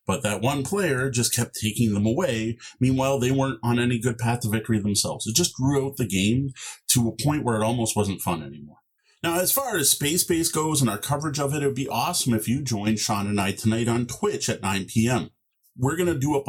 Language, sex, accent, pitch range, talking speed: English, male, American, 105-135 Hz, 245 wpm